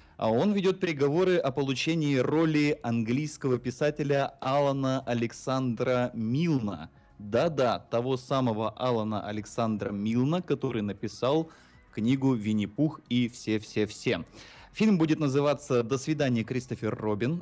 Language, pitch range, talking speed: Russian, 105-135 Hz, 105 wpm